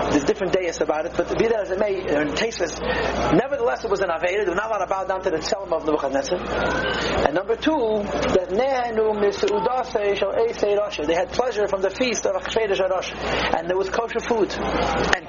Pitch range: 195-255 Hz